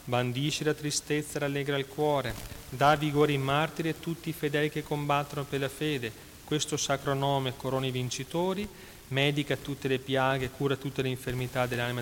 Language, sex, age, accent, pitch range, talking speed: Italian, male, 30-49, native, 125-145 Hz, 175 wpm